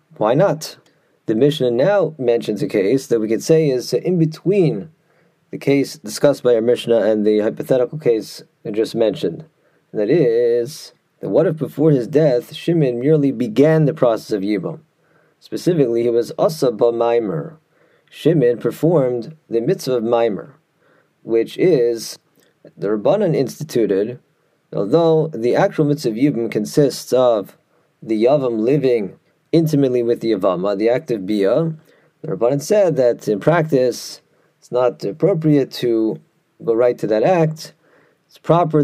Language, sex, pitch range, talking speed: English, male, 120-160 Hz, 150 wpm